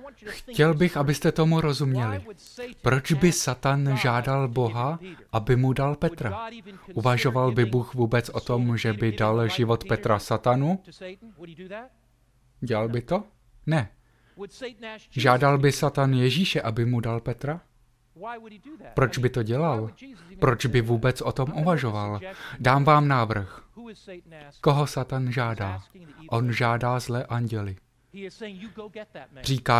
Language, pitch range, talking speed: Slovak, 125-160 Hz, 120 wpm